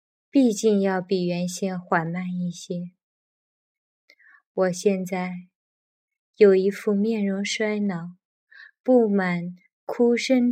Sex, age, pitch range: female, 20-39, 180-225 Hz